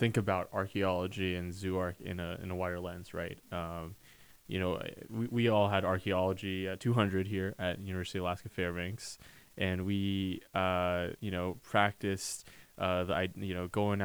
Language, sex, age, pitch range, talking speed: English, male, 20-39, 95-115 Hz, 165 wpm